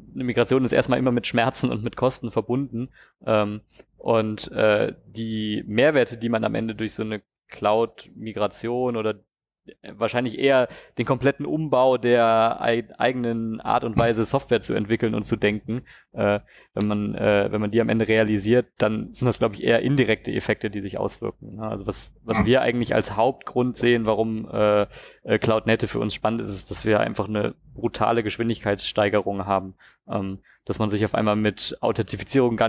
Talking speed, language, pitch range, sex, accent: 165 wpm, German, 105-120 Hz, male, German